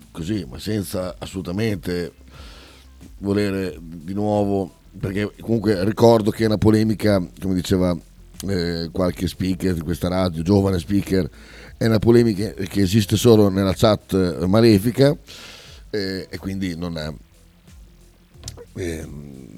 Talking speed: 120 wpm